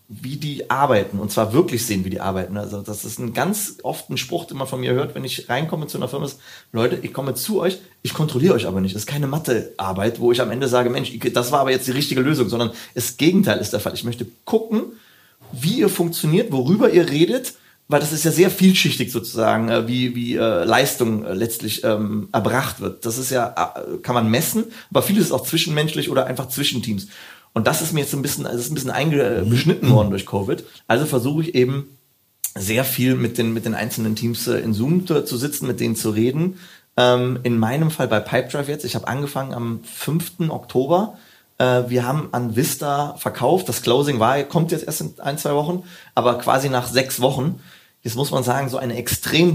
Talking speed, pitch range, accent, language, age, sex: 210 wpm, 115-145 Hz, German, German, 30-49, male